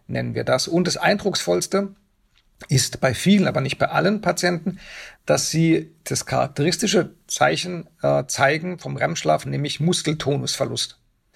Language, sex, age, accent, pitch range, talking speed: German, male, 50-69, German, 135-175 Hz, 130 wpm